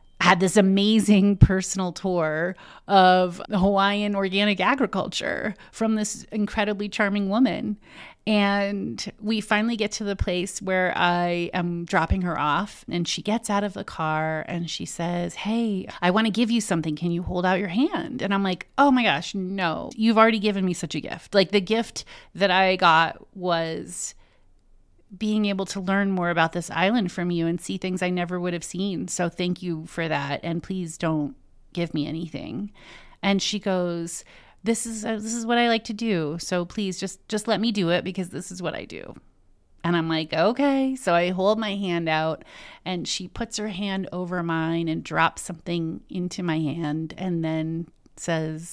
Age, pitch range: 30-49, 170-205 Hz